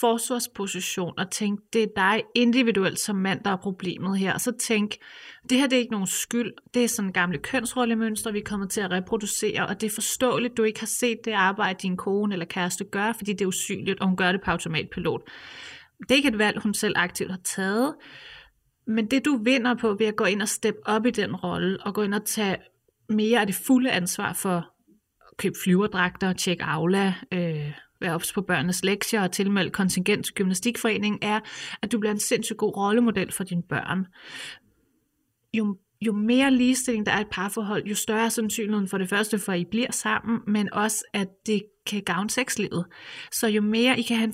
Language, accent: Danish, native